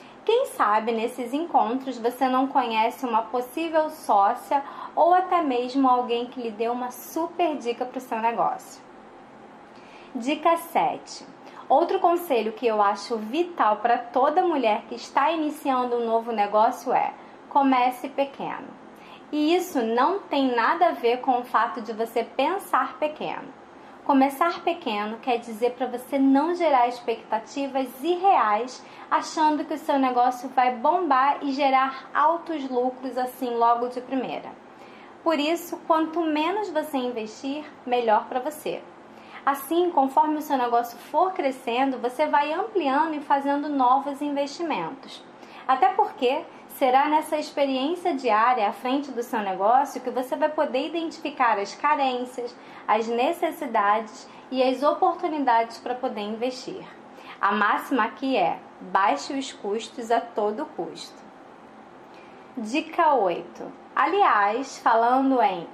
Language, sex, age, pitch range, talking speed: Portuguese, female, 20-39, 245-310 Hz, 135 wpm